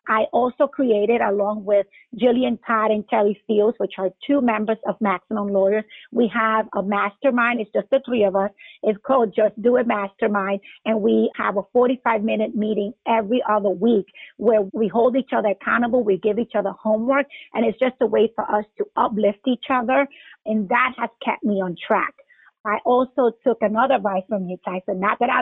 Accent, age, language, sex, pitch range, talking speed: American, 50-69, English, female, 205-245 Hz, 195 wpm